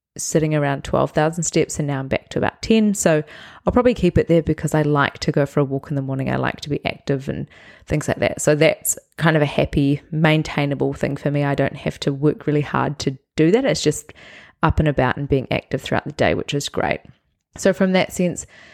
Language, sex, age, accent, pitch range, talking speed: English, female, 20-39, Australian, 145-170 Hz, 240 wpm